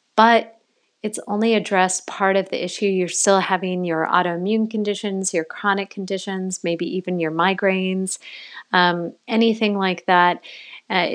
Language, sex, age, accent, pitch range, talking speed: English, female, 30-49, American, 175-210 Hz, 140 wpm